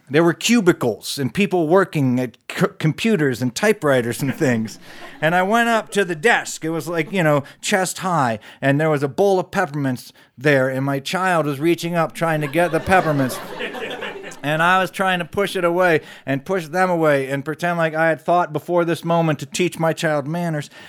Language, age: English, 40-59